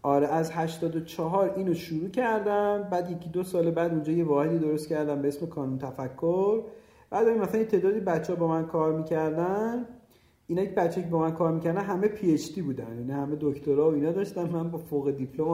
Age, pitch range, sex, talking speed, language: 40-59, 145-195 Hz, male, 210 wpm, Persian